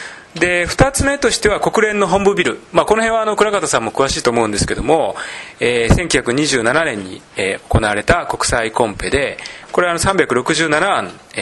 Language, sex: Japanese, male